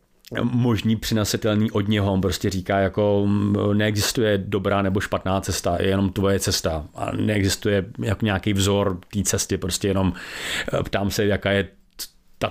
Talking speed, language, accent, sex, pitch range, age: 145 wpm, Czech, native, male, 100-105 Hz, 30-49